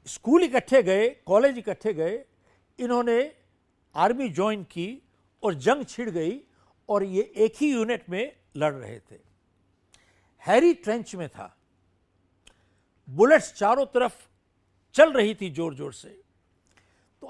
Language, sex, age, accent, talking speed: Hindi, male, 60-79, native, 130 wpm